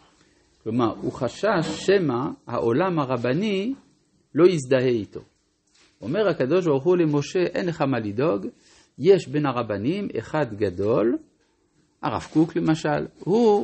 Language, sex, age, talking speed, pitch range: Hebrew, male, 50-69, 120 wpm, 125-175 Hz